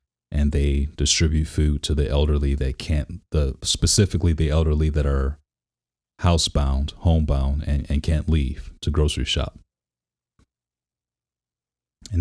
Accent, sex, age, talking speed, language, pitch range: American, male, 30-49, 125 wpm, English, 70-80 Hz